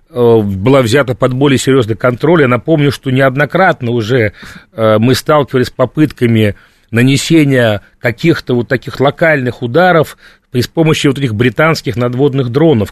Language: Russian